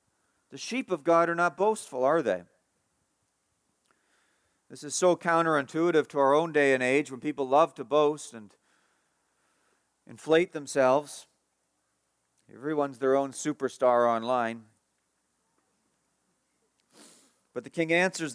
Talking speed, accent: 120 wpm, American